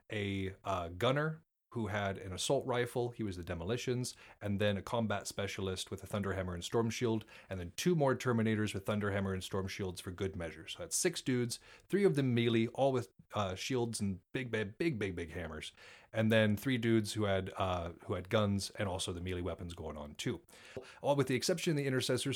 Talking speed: 220 wpm